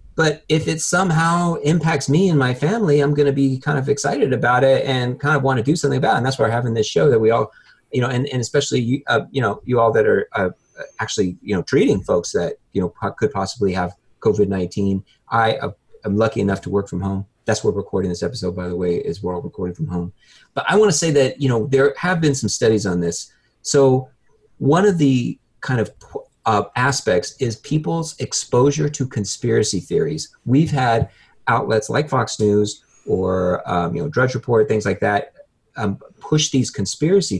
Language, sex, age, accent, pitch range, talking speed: English, male, 30-49, American, 105-145 Hz, 220 wpm